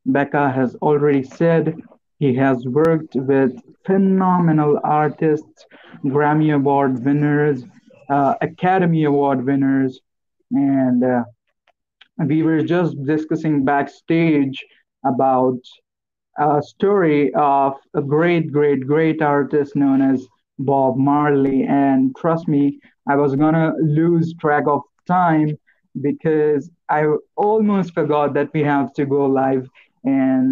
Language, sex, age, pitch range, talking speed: English, male, 50-69, 140-170 Hz, 115 wpm